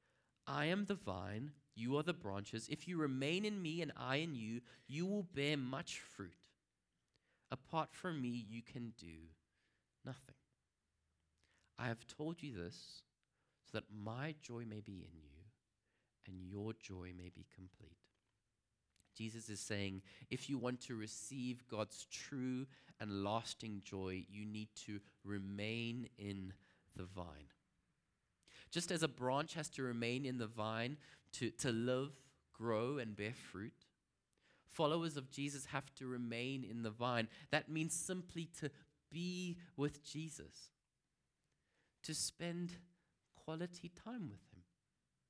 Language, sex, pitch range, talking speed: English, male, 110-155 Hz, 140 wpm